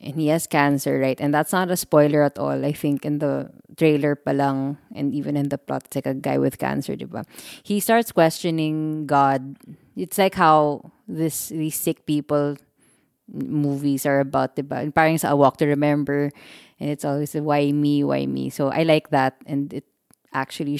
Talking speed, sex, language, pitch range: 190 wpm, female, English, 140-160 Hz